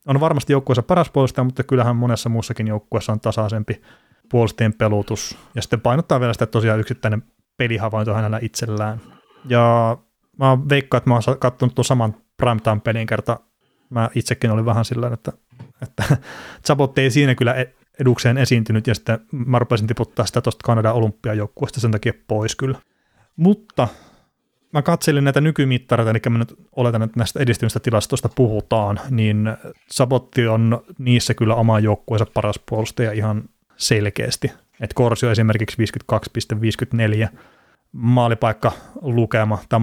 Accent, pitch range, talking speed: native, 110-125 Hz, 140 wpm